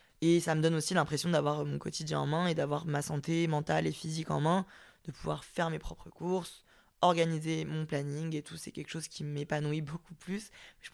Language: French